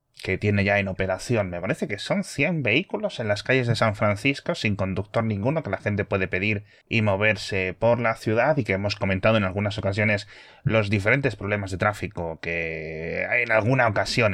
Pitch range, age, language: 95-120 Hz, 20-39, Spanish